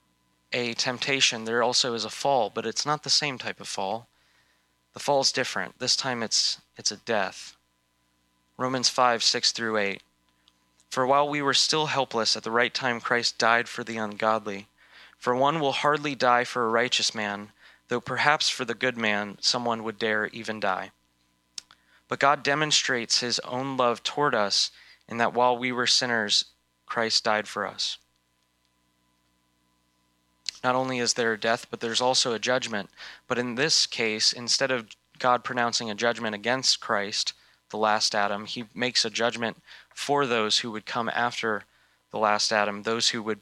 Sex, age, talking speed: male, 20-39, 175 wpm